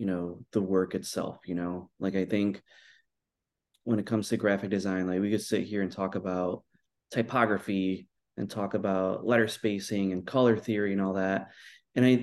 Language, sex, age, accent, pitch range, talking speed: English, male, 20-39, American, 95-110 Hz, 180 wpm